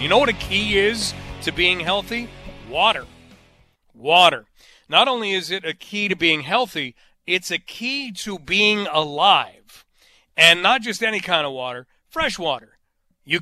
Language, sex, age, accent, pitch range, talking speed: English, male, 40-59, American, 155-205 Hz, 160 wpm